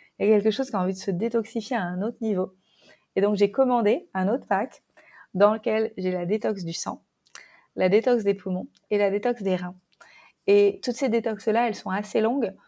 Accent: French